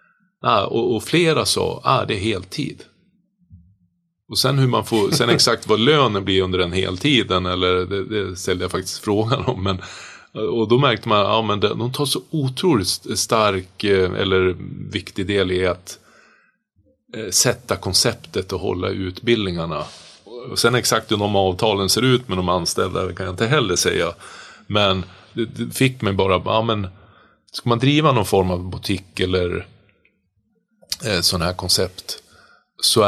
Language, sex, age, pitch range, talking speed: Swedish, male, 30-49, 90-110 Hz, 160 wpm